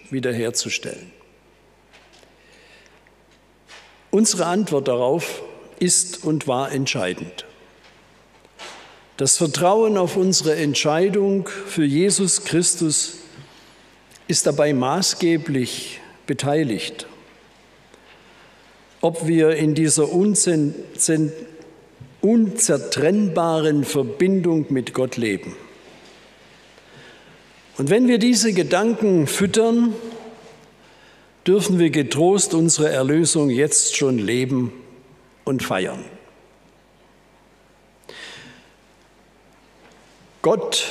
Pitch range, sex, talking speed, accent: 145-195 Hz, male, 65 wpm, German